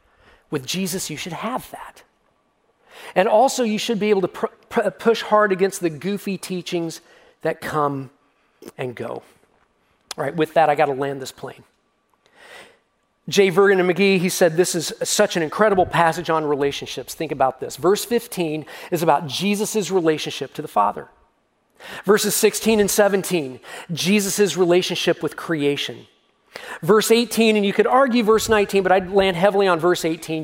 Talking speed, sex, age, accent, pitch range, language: 165 wpm, male, 40-59, American, 155-205 Hz, English